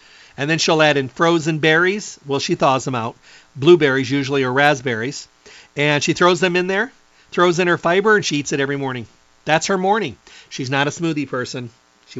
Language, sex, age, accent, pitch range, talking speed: English, male, 50-69, American, 130-160 Hz, 200 wpm